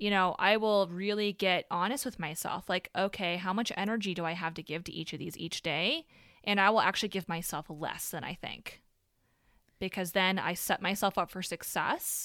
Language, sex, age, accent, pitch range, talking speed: English, female, 20-39, American, 175-210 Hz, 210 wpm